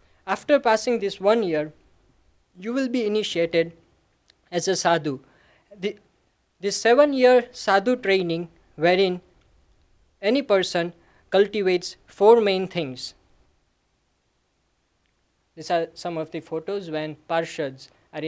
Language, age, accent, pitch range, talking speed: English, 20-39, Indian, 155-220 Hz, 110 wpm